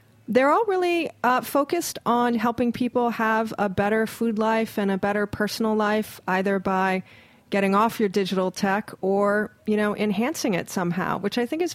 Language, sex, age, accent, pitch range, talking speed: English, female, 30-49, American, 185-215 Hz, 180 wpm